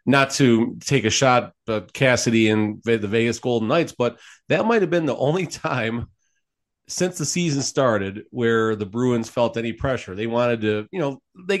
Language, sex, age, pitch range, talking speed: English, male, 40-59, 110-140 Hz, 185 wpm